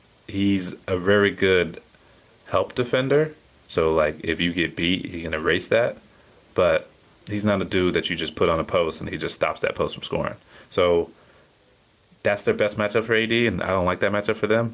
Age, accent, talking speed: 30-49, American, 210 wpm